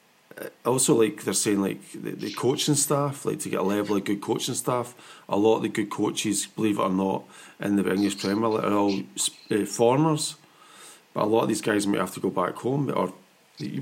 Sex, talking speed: male, 220 wpm